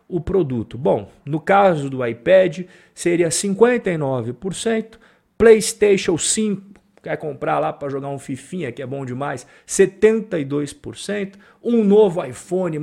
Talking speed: 140 wpm